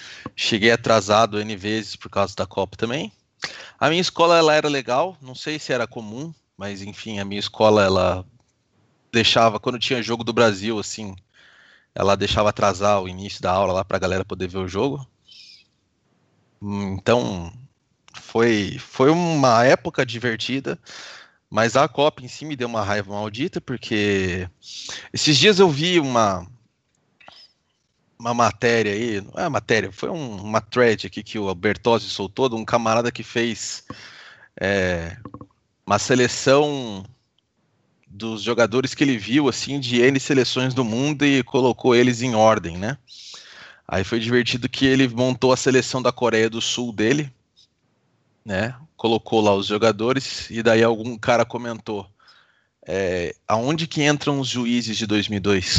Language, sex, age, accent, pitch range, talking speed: Portuguese, male, 20-39, Brazilian, 105-130 Hz, 150 wpm